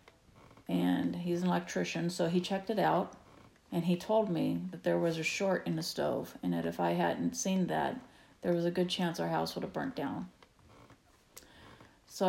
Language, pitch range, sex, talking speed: English, 160-185 Hz, female, 195 wpm